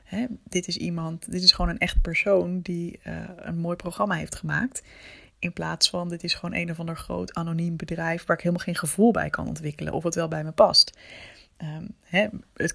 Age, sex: 20-39, female